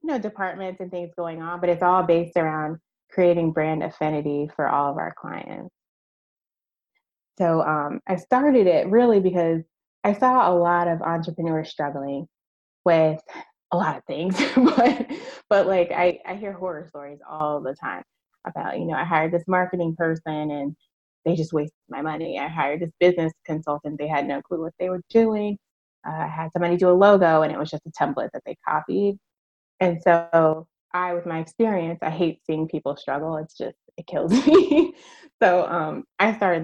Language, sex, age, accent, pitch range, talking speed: English, female, 20-39, American, 155-180 Hz, 185 wpm